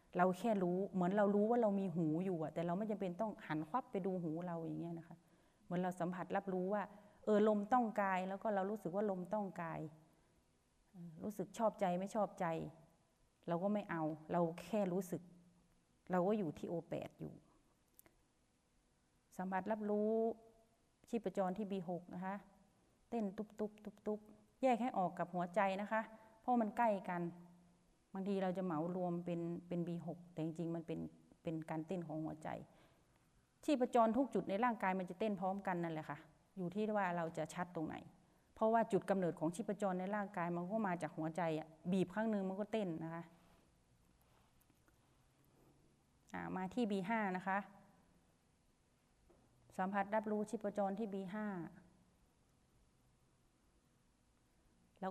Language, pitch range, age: Thai, 170-210 Hz, 30-49